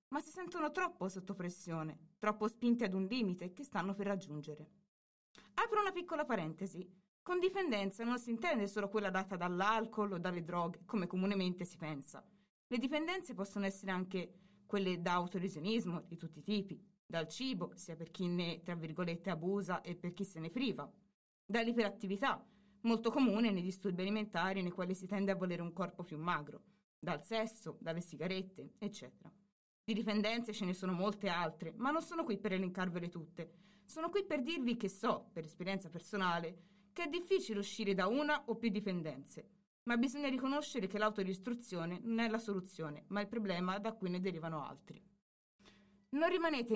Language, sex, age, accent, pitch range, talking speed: Italian, female, 20-39, native, 180-230 Hz, 170 wpm